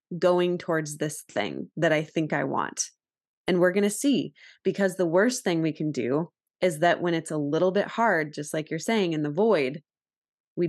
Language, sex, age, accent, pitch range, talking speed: English, female, 20-39, American, 150-185 Hz, 210 wpm